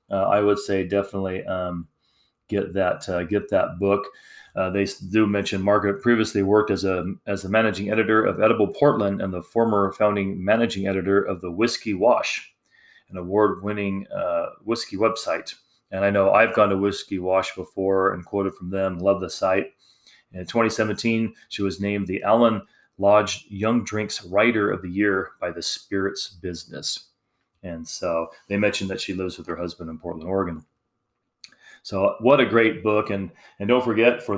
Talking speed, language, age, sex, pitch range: 180 wpm, English, 30-49, male, 95-105 Hz